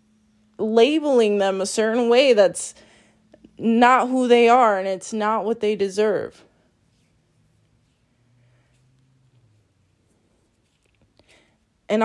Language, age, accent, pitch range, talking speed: English, 20-39, American, 190-250 Hz, 85 wpm